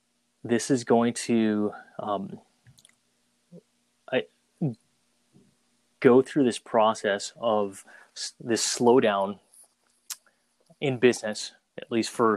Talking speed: 80 wpm